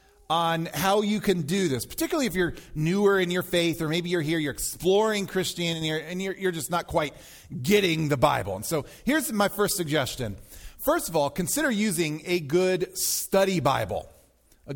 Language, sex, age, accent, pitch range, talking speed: English, male, 40-59, American, 155-215 Hz, 185 wpm